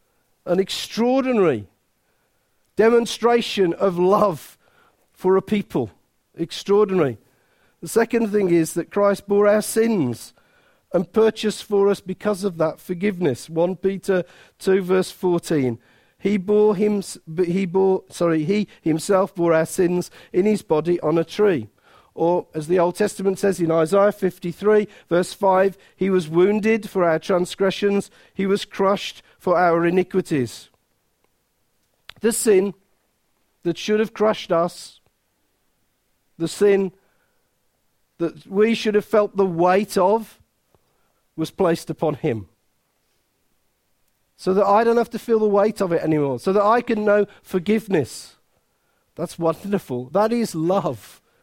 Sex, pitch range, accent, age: male, 165-205 Hz, British, 50-69